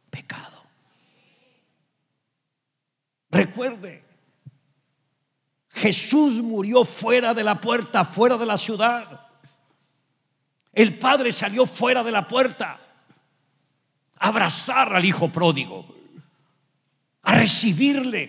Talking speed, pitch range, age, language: 85 wpm, 135-180 Hz, 50-69, English